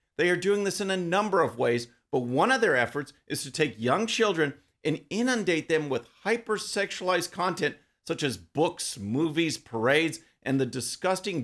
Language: English